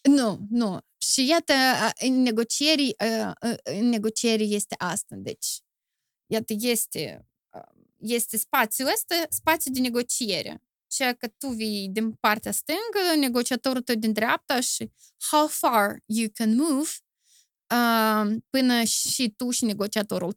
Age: 20-39